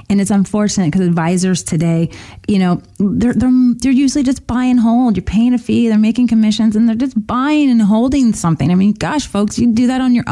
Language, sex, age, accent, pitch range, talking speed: English, female, 30-49, American, 180-240 Hz, 235 wpm